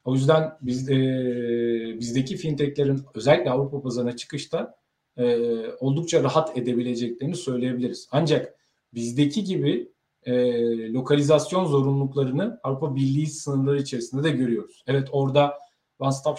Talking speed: 115 wpm